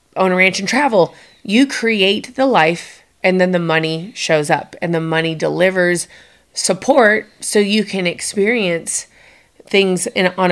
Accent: American